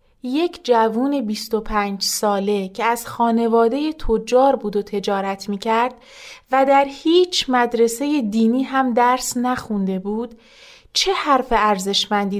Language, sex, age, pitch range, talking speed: Persian, female, 30-49, 200-250 Hz, 115 wpm